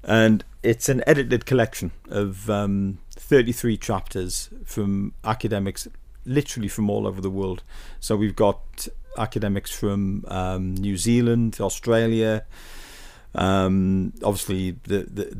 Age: 50-69